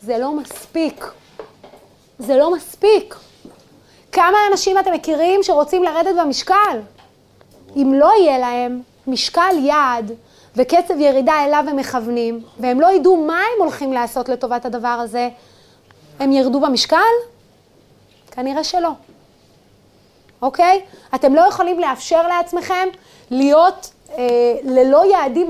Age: 30-49